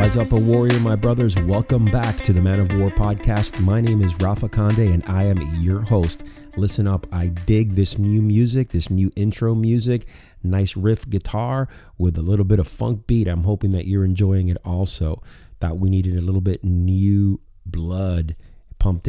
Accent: American